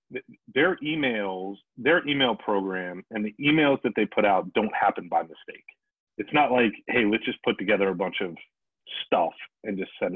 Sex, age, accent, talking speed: male, 40-59, American, 185 wpm